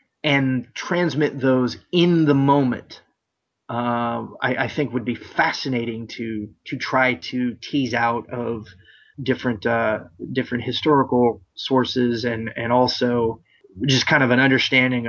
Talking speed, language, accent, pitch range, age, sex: 130 wpm, English, American, 115-130 Hz, 30-49, male